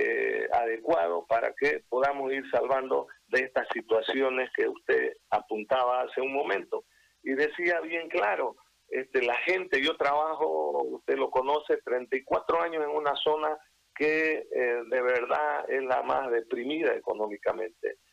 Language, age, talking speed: Spanish, 50-69, 135 wpm